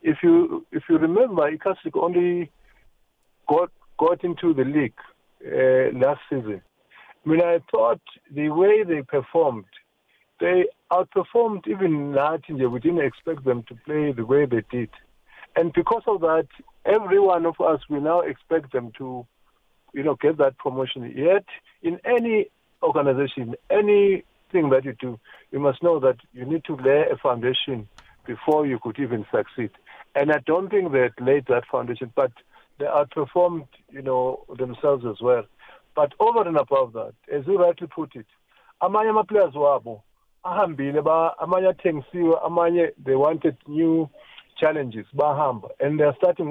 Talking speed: 145 wpm